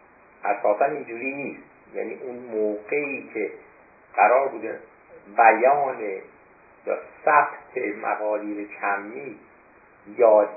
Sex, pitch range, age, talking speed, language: male, 110-175 Hz, 50-69, 85 wpm, Persian